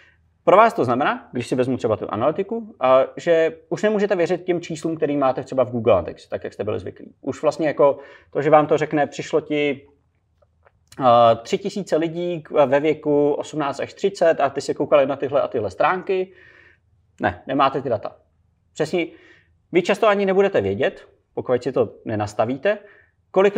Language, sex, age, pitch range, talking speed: Czech, male, 30-49, 125-165 Hz, 175 wpm